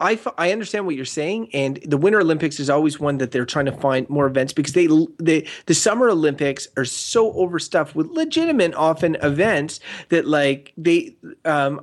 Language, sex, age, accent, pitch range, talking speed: English, male, 30-49, American, 130-175 Hz, 195 wpm